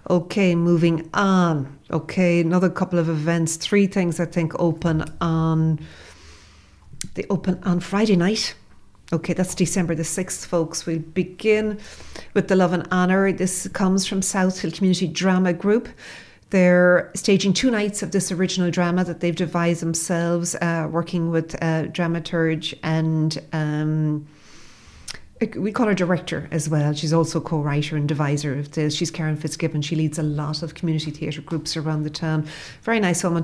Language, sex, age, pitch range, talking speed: English, female, 40-59, 160-185 Hz, 160 wpm